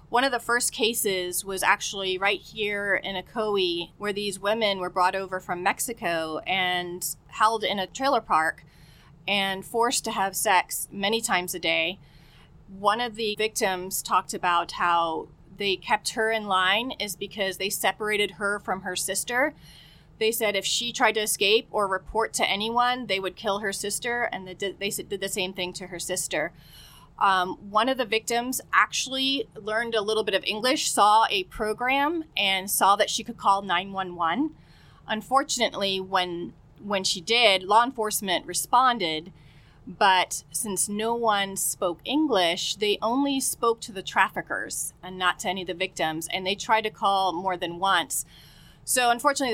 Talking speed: 165 wpm